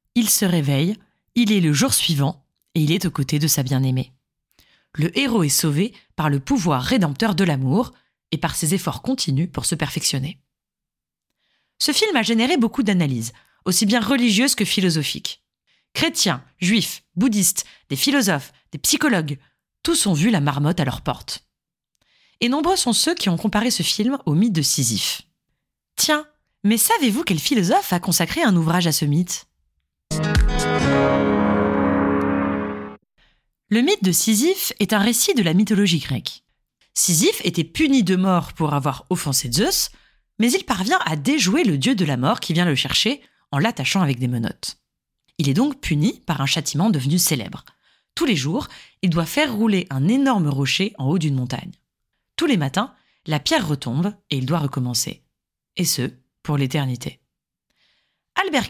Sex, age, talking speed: female, 30-49, 165 wpm